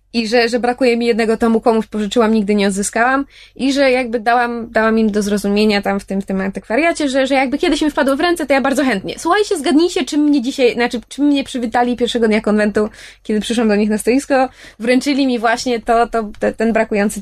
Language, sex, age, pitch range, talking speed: Polish, female, 20-39, 210-250 Hz, 225 wpm